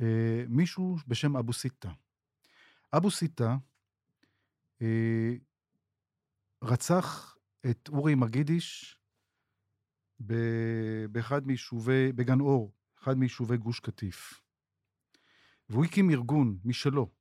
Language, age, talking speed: Hebrew, 50-69, 85 wpm